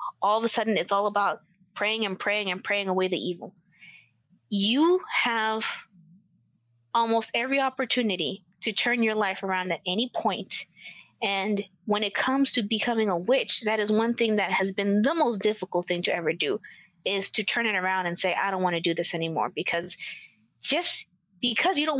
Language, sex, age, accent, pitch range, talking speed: English, female, 20-39, American, 185-245 Hz, 190 wpm